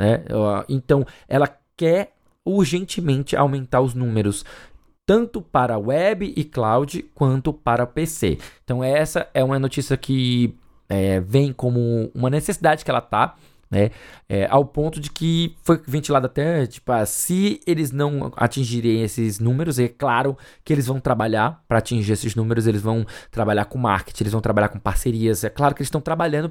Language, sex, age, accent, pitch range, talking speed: Portuguese, male, 20-39, Brazilian, 115-170 Hz, 150 wpm